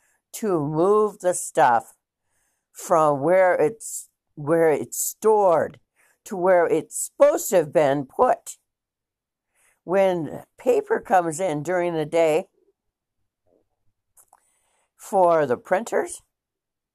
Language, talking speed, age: English, 100 wpm, 60-79